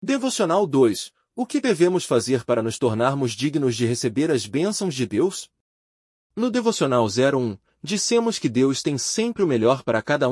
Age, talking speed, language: 30-49, 165 wpm, Portuguese